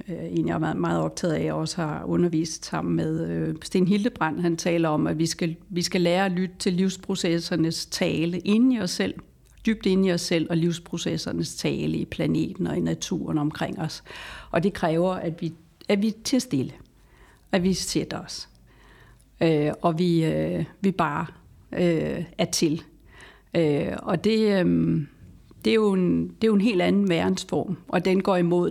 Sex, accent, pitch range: female, native, 160-185 Hz